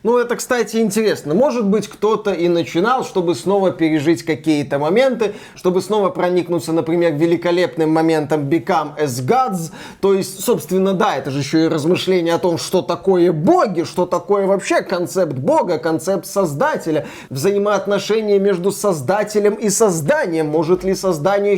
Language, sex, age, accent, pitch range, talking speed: Russian, male, 20-39, native, 170-205 Hz, 145 wpm